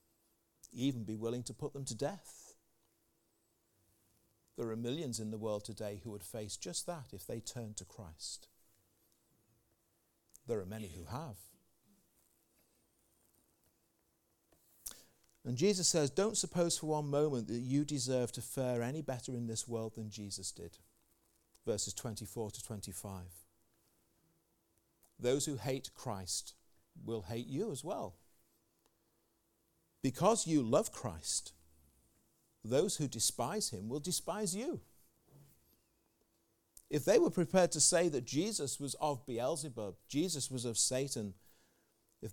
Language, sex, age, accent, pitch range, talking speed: English, male, 50-69, British, 105-135 Hz, 130 wpm